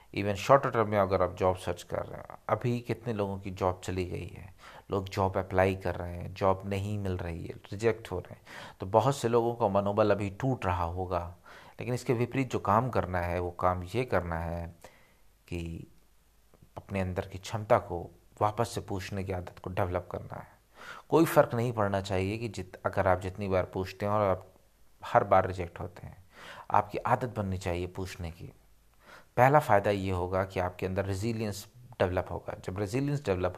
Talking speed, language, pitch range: 195 wpm, Hindi, 95-110 Hz